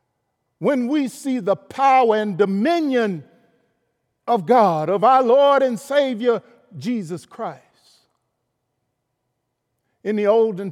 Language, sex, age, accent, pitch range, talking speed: English, male, 50-69, American, 145-220 Hz, 105 wpm